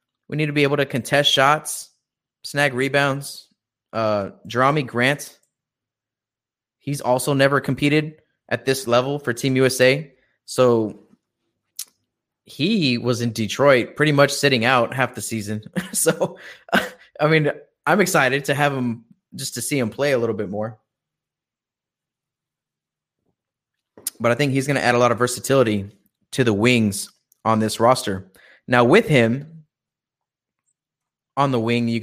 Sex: male